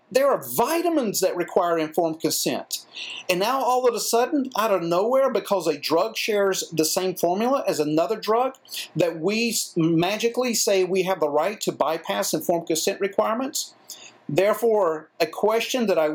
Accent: American